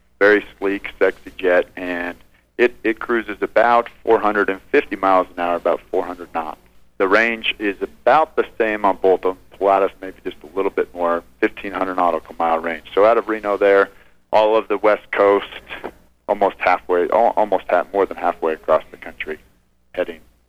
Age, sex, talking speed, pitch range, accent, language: 50-69, male, 165 wpm, 85-100 Hz, American, English